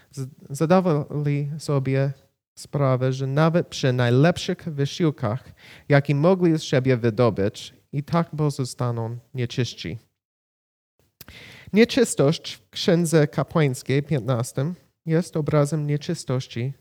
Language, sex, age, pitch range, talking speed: Polish, male, 30-49, 125-150 Hz, 90 wpm